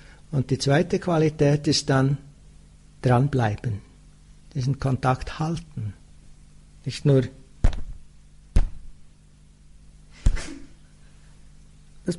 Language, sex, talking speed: English, male, 65 wpm